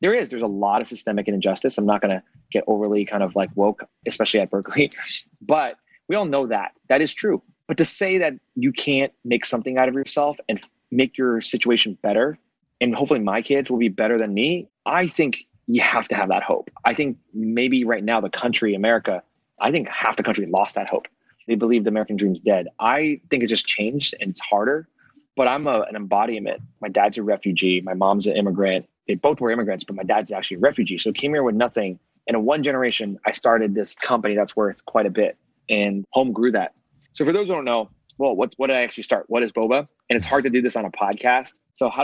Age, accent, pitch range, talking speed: 20-39, American, 105-135 Hz, 235 wpm